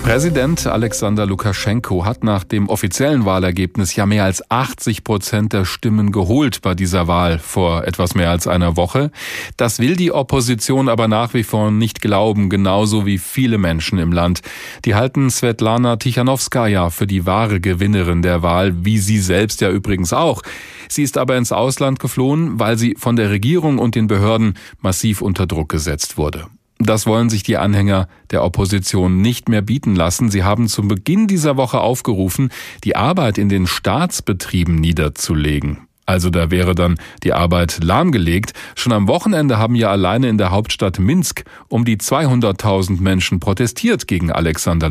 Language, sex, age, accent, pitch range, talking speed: German, male, 40-59, German, 90-115 Hz, 165 wpm